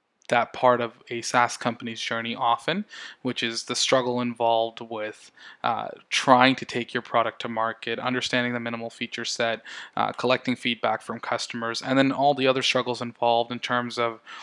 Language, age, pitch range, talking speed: English, 10-29, 115-125 Hz, 175 wpm